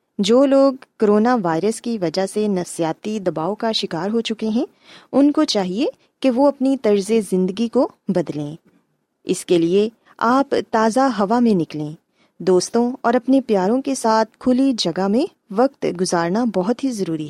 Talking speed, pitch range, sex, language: 160 wpm, 180-245 Hz, female, Urdu